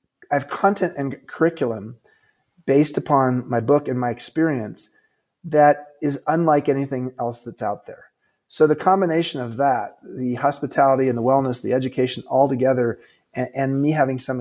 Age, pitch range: 30-49, 130-165 Hz